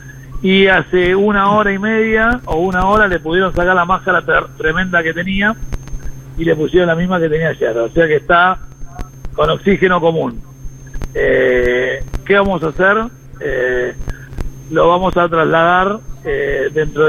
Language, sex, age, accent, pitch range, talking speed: Spanish, male, 50-69, Argentinian, 130-180 Hz, 160 wpm